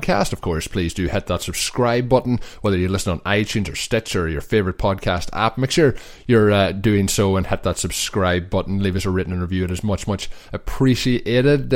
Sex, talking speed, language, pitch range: male, 215 wpm, English, 90-120 Hz